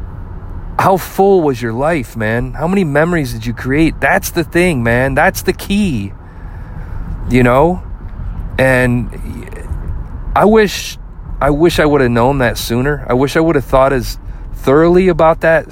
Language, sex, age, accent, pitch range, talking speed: English, male, 40-59, American, 100-150 Hz, 160 wpm